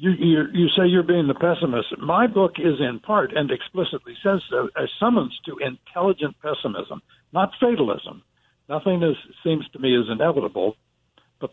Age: 60-79